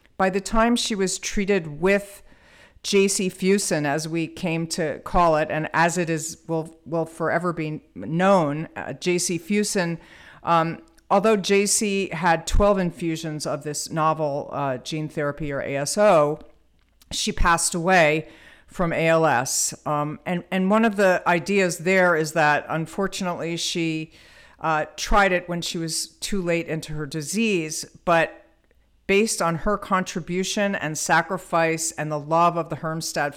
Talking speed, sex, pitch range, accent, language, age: 145 wpm, female, 155-185 Hz, American, English, 50-69